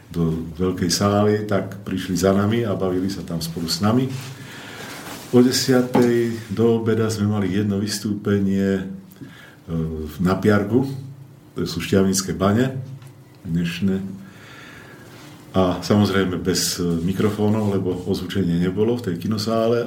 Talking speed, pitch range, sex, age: 115 wpm, 95-120 Hz, male, 50-69